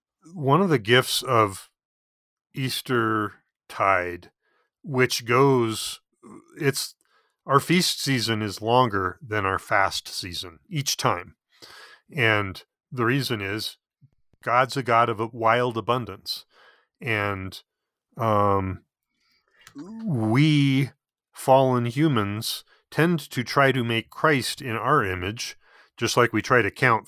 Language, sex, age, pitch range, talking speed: English, male, 40-59, 105-135 Hz, 115 wpm